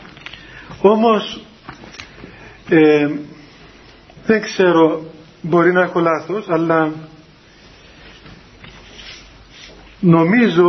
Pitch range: 155-185 Hz